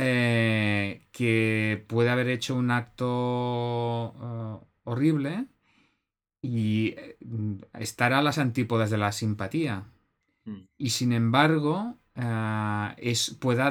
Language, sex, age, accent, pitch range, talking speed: Spanish, male, 30-49, Spanish, 110-125 Hz, 90 wpm